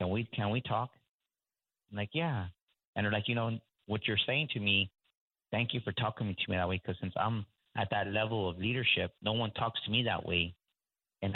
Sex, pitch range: male, 95-120 Hz